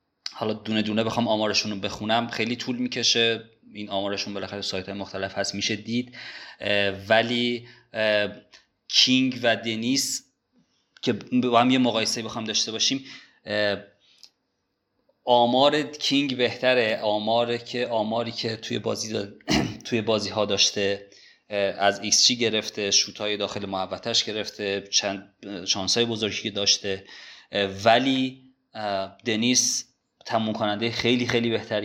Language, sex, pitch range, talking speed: Persian, male, 100-120 Hz, 120 wpm